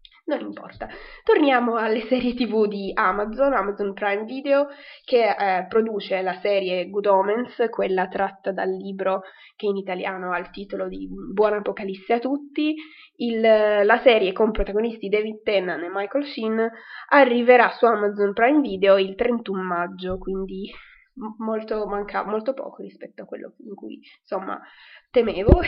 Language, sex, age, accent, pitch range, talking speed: Italian, female, 20-39, native, 195-250 Hz, 145 wpm